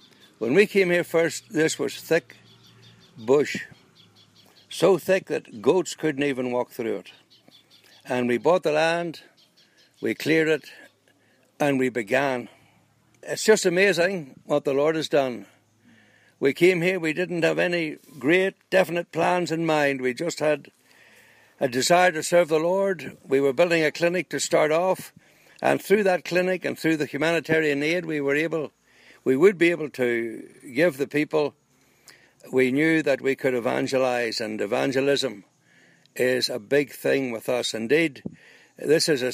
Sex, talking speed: male, 160 wpm